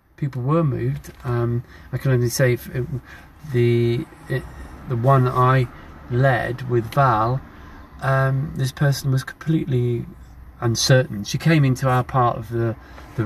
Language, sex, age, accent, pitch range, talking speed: English, male, 40-59, British, 110-130 Hz, 145 wpm